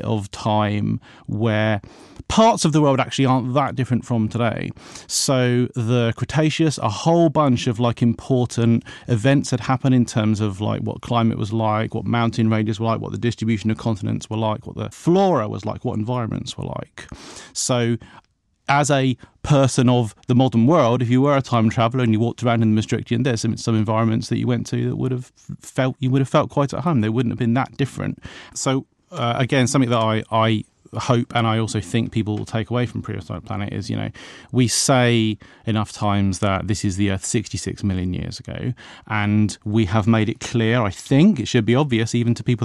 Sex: male